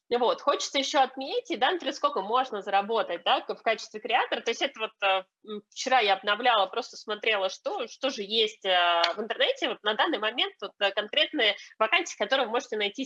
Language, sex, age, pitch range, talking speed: Russian, female, 20-39, 210-275 Hz, 195 wpm